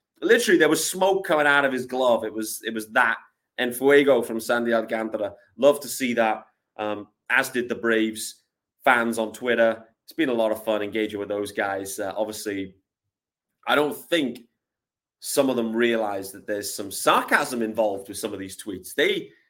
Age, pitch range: 30-49, 110-140 Hz